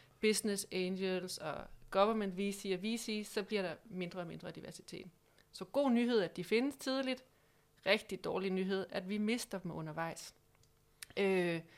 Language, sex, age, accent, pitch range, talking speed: Danish, female, 30-49, native, 175-210 Hz, 155 wpm